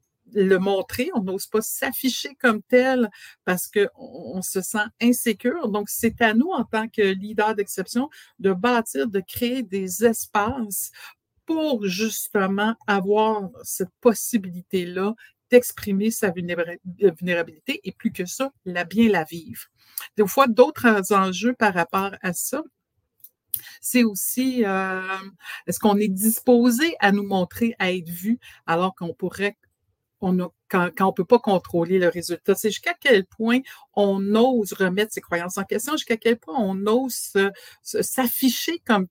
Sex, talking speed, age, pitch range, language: female, 150 wpm, 60-79, 185-235 Hz, French